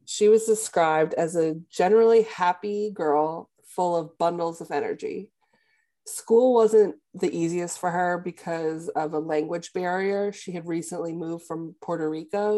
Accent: American